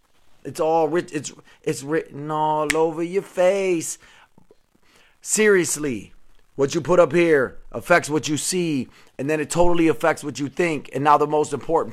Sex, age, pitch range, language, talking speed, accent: male, 30-49, 165-225 Hz, English, 160 wpm, American